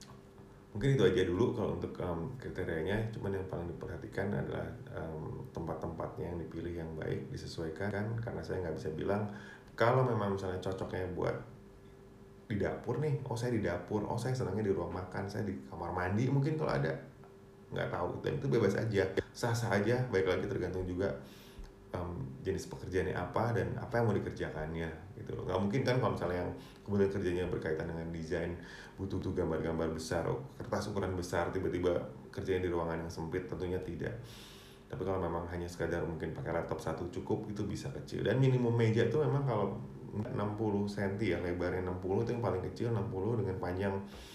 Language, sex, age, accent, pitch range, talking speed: Indonesian, male, 30-49, native, 85-115 Hz, 175 wpm